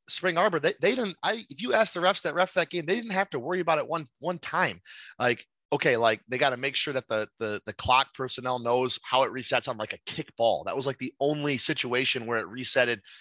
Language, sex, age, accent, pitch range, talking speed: English, male, 30-49, American, 125-160 Hz, 260 wpm